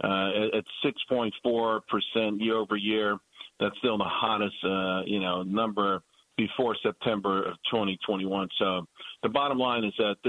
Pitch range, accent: 105-125 Hz, American